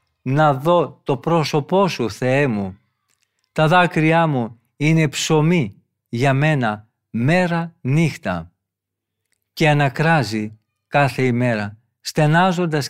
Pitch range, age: 115-165 Hz, 50-69